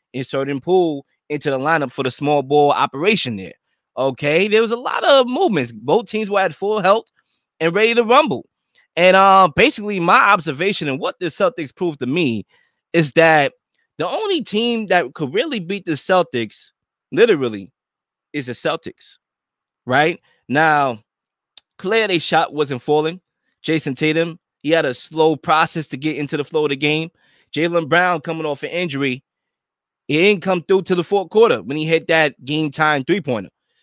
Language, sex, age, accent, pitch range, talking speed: English, male, 20-39, American, 150-195 Hz, 170 wpm